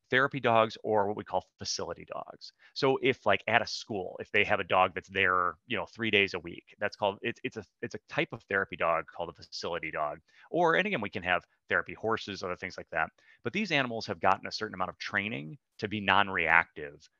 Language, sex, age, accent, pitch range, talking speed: English, male, 30-49, American, 95-115 Hz, 235 wpm